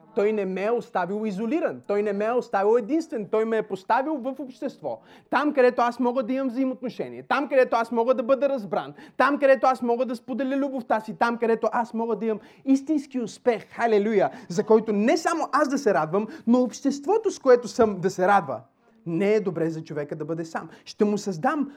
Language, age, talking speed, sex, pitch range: Bulgarian, 30-49, 210 wpm, male, 210-285 Hz